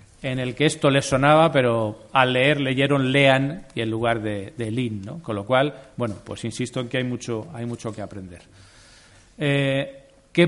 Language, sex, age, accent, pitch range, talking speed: Spanish, male, 40-59, Spanish, 120-140 Hz, 195 wpm